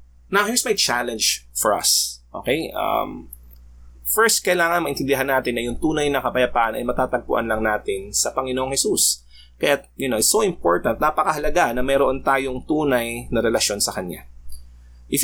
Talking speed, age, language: 160 wpm, 20-39, Filipino